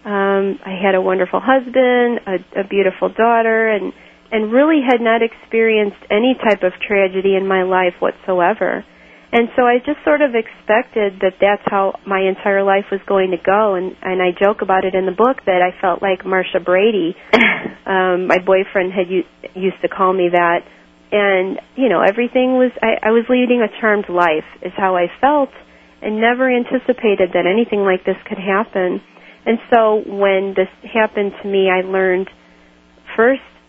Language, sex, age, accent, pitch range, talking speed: English, female, 40-59, American, 185-215 Hz, 180 wpm